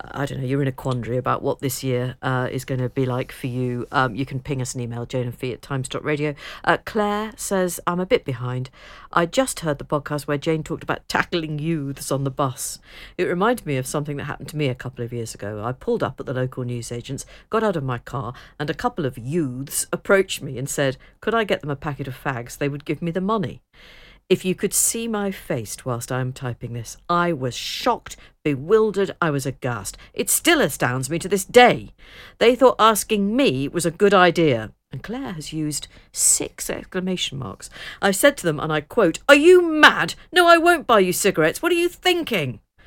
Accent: British